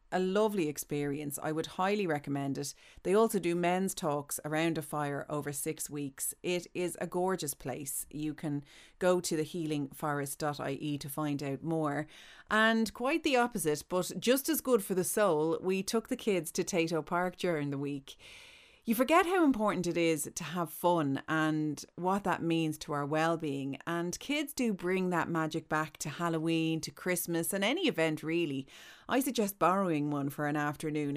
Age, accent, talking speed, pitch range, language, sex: 30-49, Irish, 175 wpm, 150-185 Hz, English, female